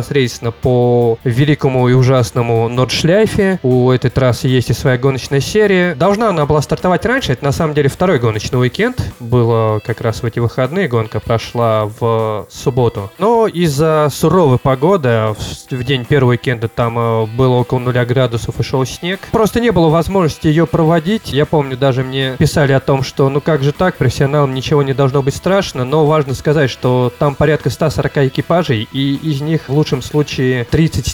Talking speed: 175 wpm